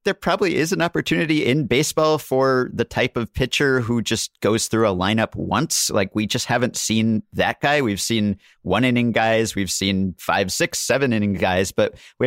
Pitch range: 95-125 Hz